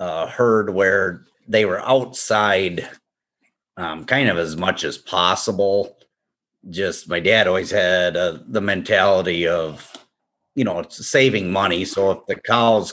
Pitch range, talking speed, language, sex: 85-105 Hz, 145 wpm, English, male